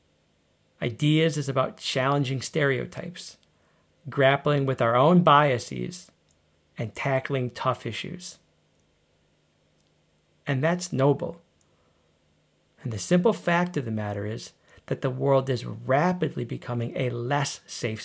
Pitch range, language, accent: 115-150 Hz, English, American